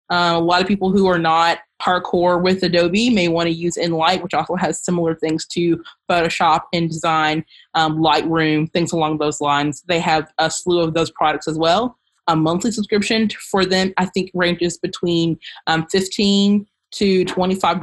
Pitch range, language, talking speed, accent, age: 165-200 Hz, English, 180 wpm, American, 20-39